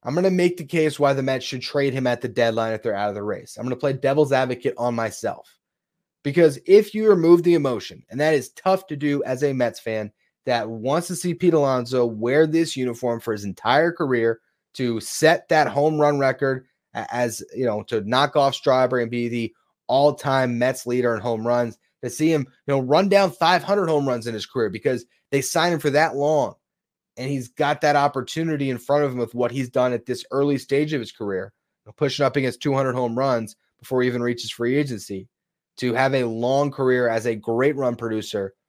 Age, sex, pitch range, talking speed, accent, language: 30-49, male, 120-160 Hz, 220 wpm, American, English